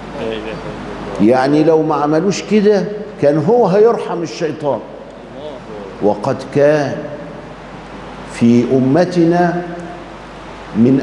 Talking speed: 75 wpm